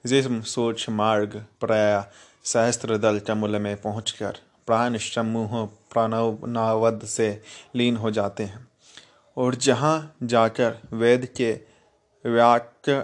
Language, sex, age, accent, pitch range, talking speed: Hindi, male, 30-49, native, 110-120 Hz, 100 wpm